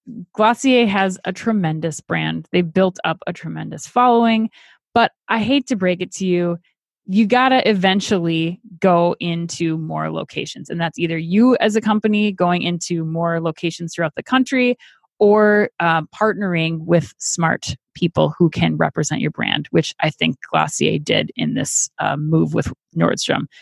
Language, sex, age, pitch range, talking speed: English, female, 20-39, 165-210 Hz, 165 wpm